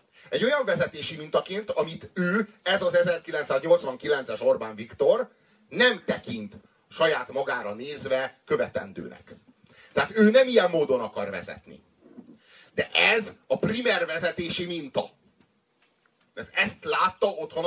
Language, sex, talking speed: Hungarian, male, 110 wpm